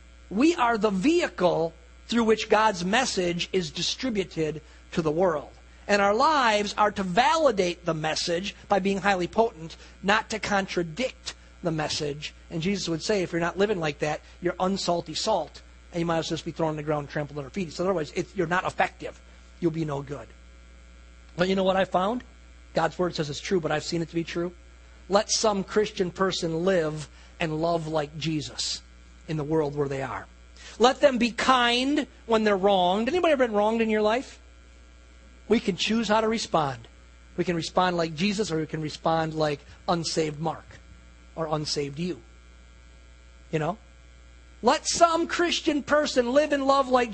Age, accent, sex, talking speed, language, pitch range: 40-59, American, male, 185 wpm, English, 155-220 Hz